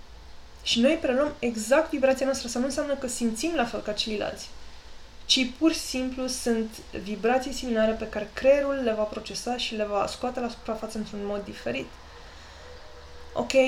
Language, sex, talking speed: Romanian, female, 165 wpm